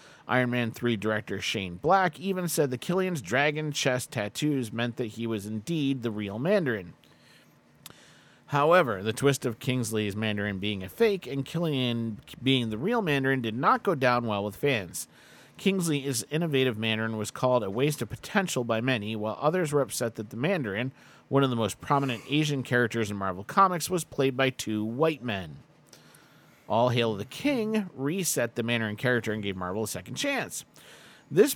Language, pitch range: English, 110-145 Hz